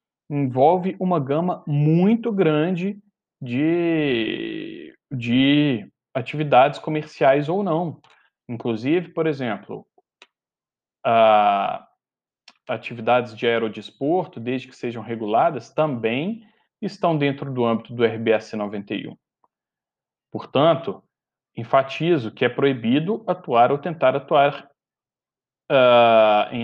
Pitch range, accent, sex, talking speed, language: 120-175 Hz, Brazilian, male, 90 wpm, Portuguese